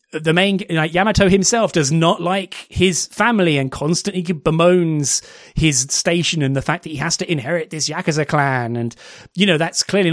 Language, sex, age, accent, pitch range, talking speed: English, male, 30-49, British, 145-190 Hz, 185 wpm